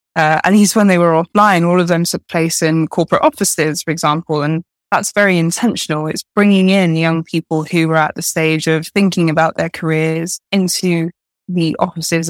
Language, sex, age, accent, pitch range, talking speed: English, female, 20-39, British, 160-180 Hz, 190 wpm